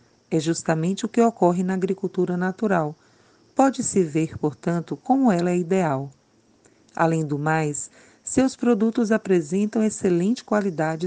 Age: 40-59